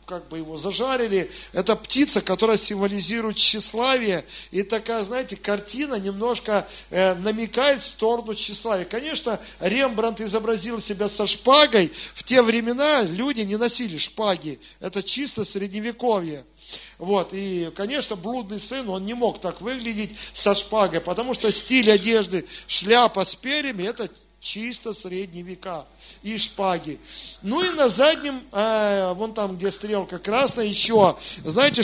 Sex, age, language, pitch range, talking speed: male, 50-69, Russian, 195-240 Hz, 135 wpm